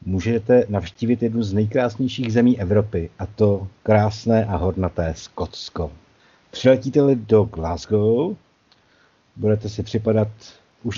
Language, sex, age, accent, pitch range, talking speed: Czech, male, 50-69, native, 95-115 Hz, 110 wpm